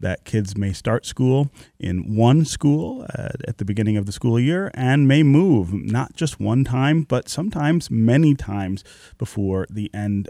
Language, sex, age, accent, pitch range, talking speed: English, male, 30-49, American, 100-130 Hz, 170 wpm